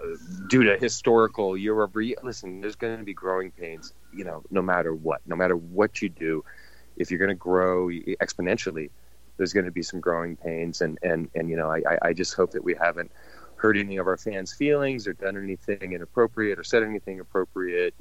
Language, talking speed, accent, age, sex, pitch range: English, 205 wpm, American, 30-49, male, 85-105 Hz